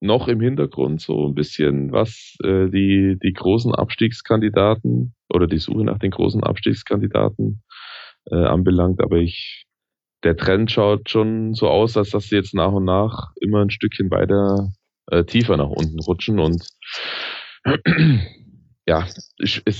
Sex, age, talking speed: male, 20-39, 145 wpm